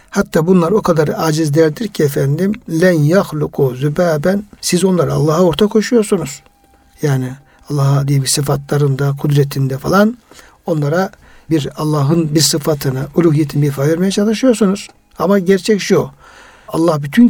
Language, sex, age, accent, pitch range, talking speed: Turkish, male, 60-79, native, 150-195 Hz, 125 wpm